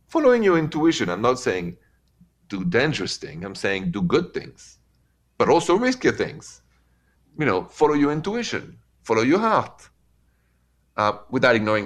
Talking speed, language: 145 wpm, English